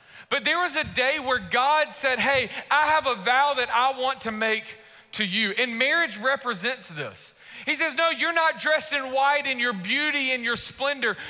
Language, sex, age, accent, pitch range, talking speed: English, male, 40-59, American, 215-285 Hz, 200 wpm